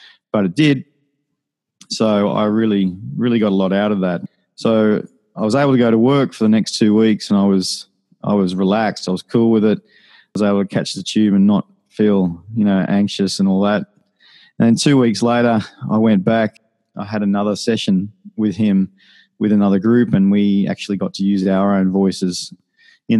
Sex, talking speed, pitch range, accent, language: male, 205 wpm, 95-110 Hz, Australian, English